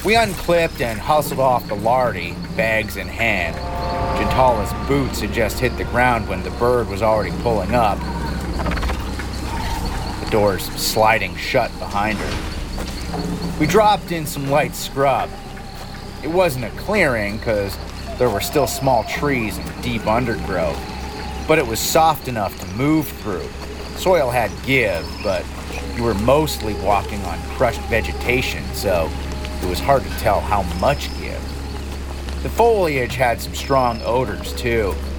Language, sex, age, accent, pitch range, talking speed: English, male, 30-49, American, 70-110 Hz, 145 wpm